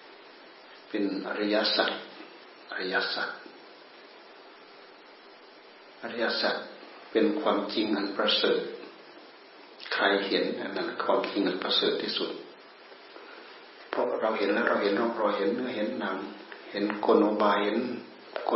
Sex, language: male, Thai